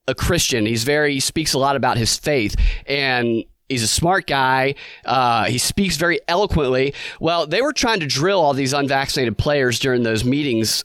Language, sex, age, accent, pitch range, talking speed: English, male, 30-49, American, 120-150 Hz, 195 wpm